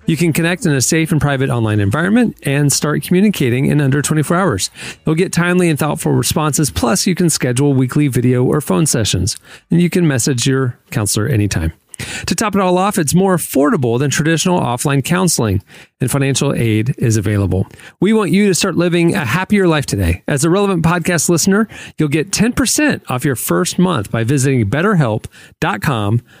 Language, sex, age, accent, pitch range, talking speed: English, male, 40-59, American, 125-175 Hz, 185 wpm